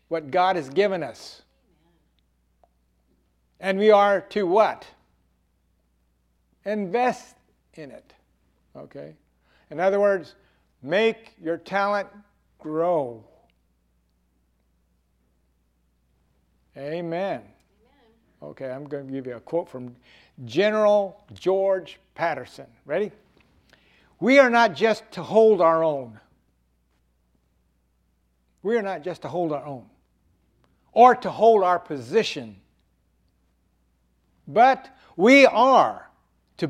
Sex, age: male, 60-79